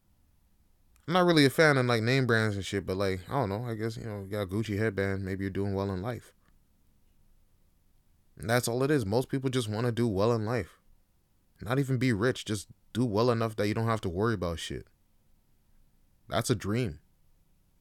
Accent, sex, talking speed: American, male, 215 wpm